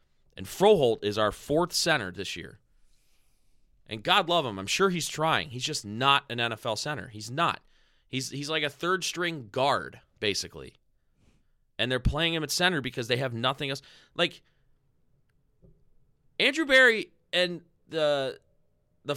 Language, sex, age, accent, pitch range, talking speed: English, male, 30-49, American, 115-180 Hz, 150 wpm